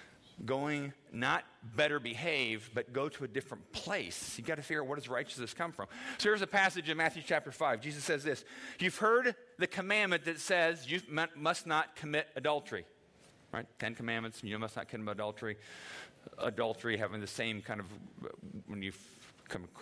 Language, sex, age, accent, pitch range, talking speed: English, male, 40-59, American, 110-150 Hz, 180 wpm